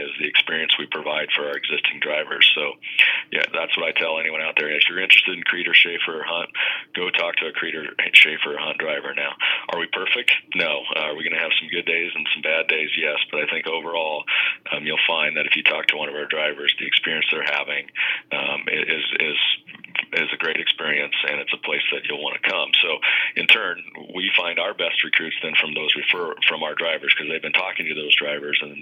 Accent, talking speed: American, 240 wpm